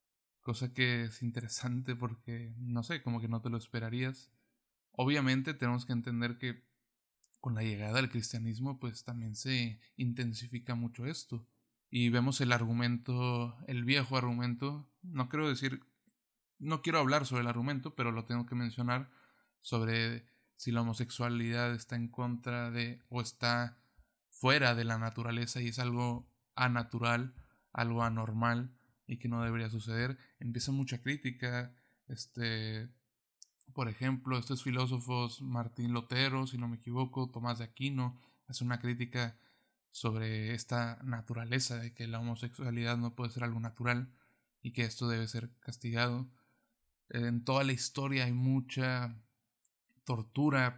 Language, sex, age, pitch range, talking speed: Spanish, male, 20-39, 120-130 Hz, 140 wpm